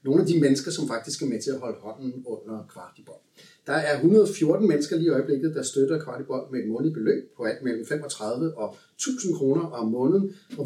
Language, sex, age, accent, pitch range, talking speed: Danish, male, 30-49, native, 115-165 Hz, 215 wpm